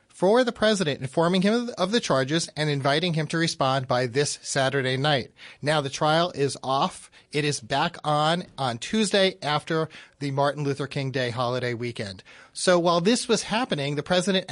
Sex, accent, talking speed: male, American, 180 wpm